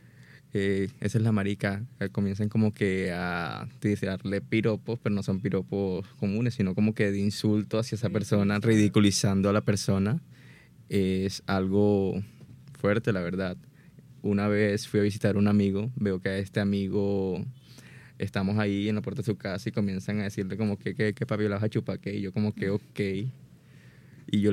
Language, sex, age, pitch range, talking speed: Spanish, male, 20-39, 95-110 Hz, 175 wpm